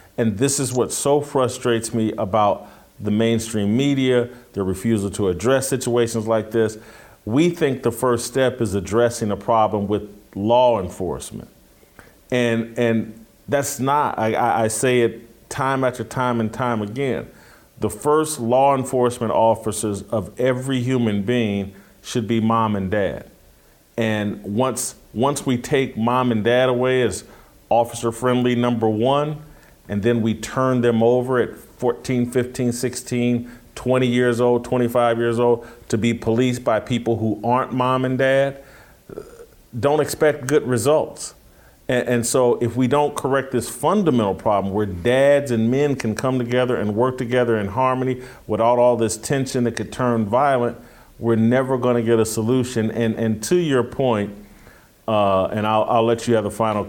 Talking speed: 160 wpm